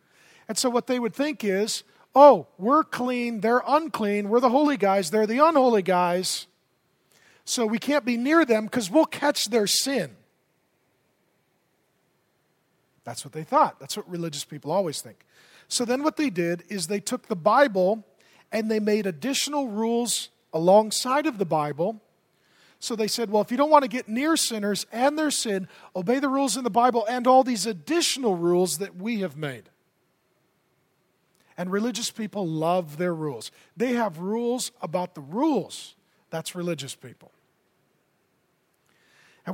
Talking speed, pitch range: 160 wpm, 190-255 Hz